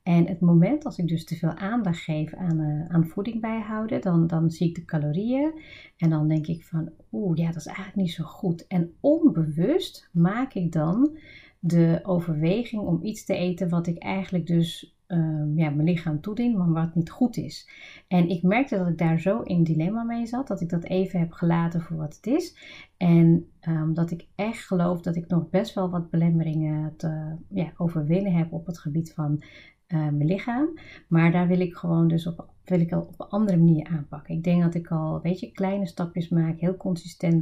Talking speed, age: 195 wpm, 30-49